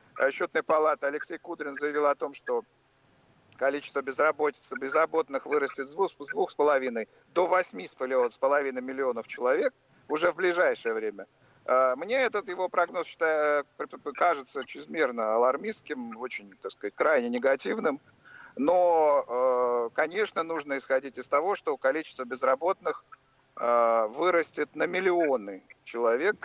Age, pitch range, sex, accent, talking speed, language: 50-69, 130-175 Hz, male, native, 110 wpm, Russian